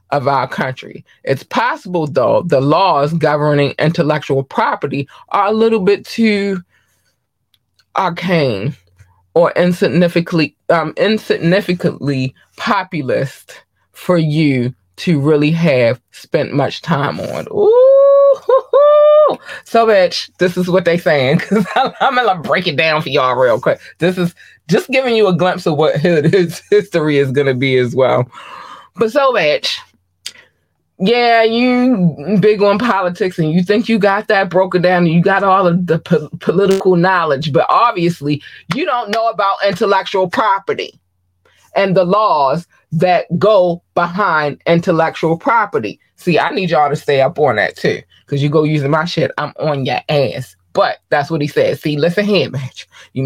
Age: 20-39